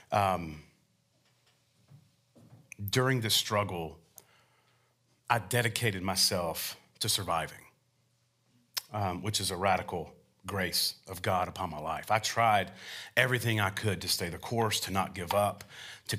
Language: English